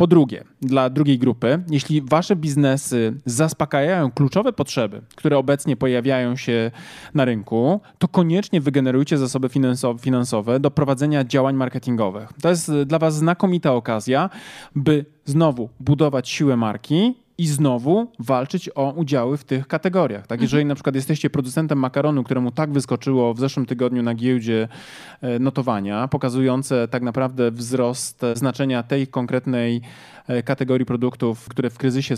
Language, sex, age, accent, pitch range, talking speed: Polish, male, 20-39, native, 125-150 Hz, 135 wpm